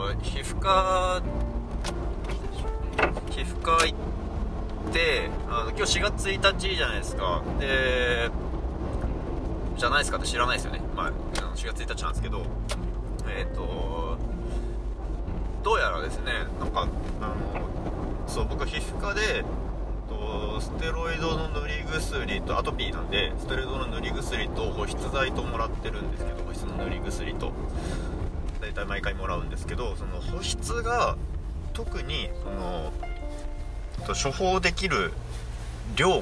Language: Japanese